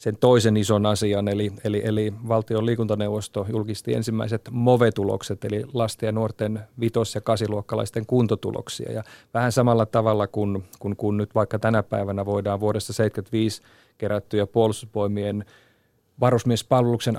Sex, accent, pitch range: male, native, 105-115 Hz